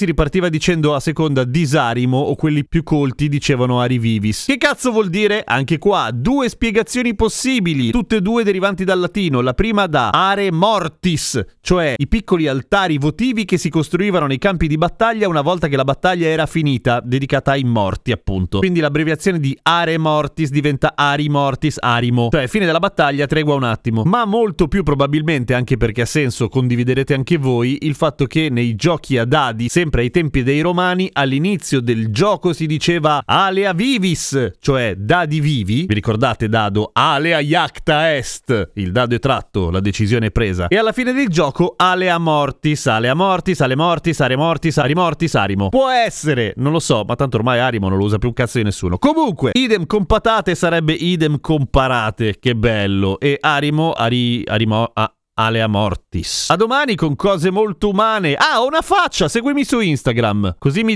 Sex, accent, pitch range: male, native, 125-180 Hz